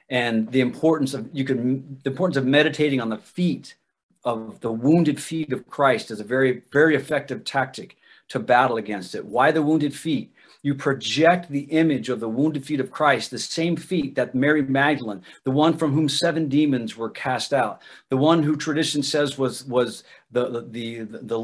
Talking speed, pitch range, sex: 195 wpm, 125-155 Hz, male